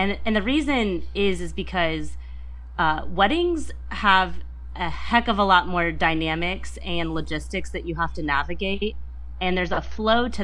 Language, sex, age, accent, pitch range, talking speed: English, female, 30-49, American, 140-180 Hz, 165 wpm